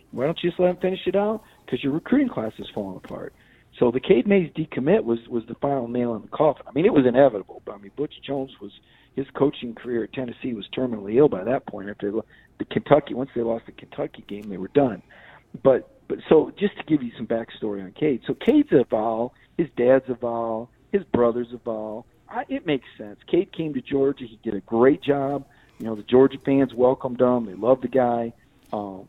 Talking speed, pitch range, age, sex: 230 wpm, 115-150 Hz, 50-69, male